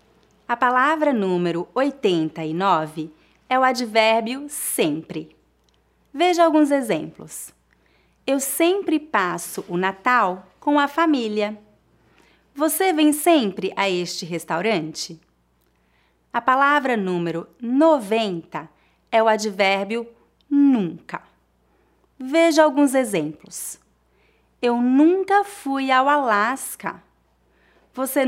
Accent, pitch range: Brazilian, 185-280 Hz